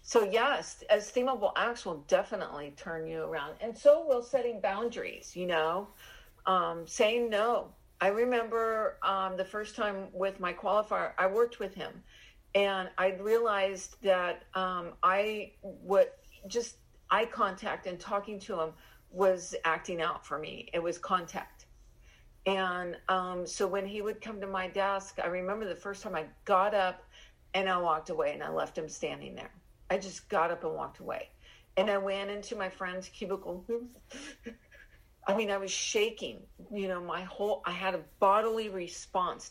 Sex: female